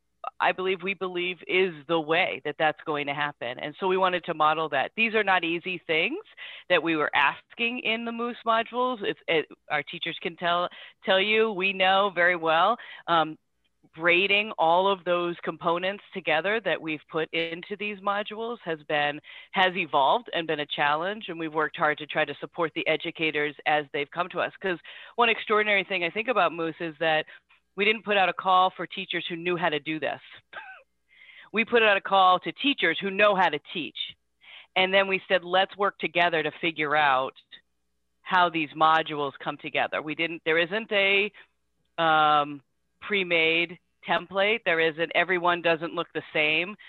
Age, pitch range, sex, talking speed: 40-59, 155-195 Hz, female, 185 wpm